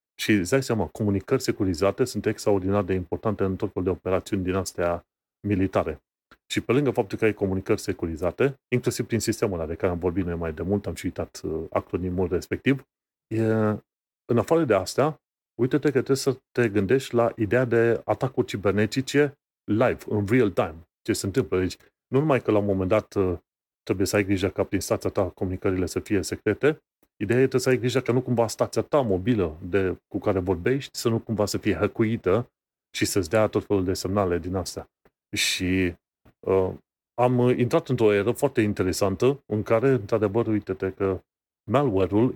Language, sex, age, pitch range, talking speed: Romanian, male, 30-49, 95-120 Hz, 185 wpm